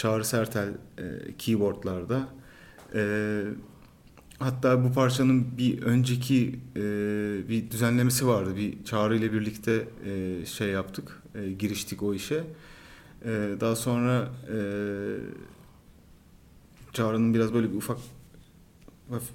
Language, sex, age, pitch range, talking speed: Turkish, male, 40-59, 110-150 Hz, 110 wpm